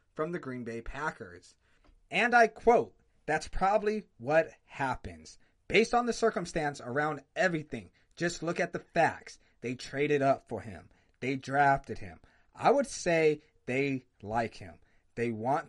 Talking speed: 150 wpm